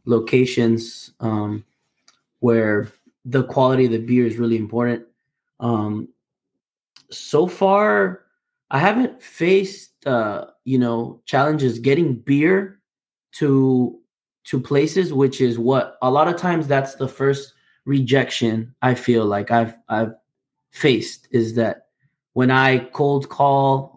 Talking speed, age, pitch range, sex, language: 125 wpm, 20-39, 115-140 Hz, male, English